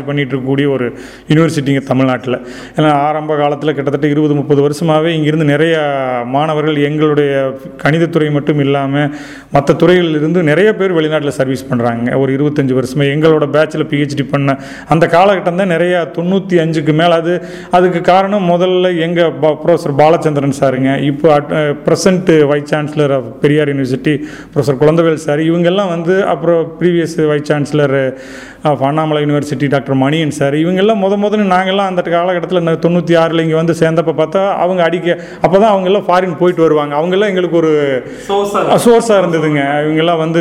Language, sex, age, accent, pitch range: Tamil, male, 30-49, native, 140-175 Hz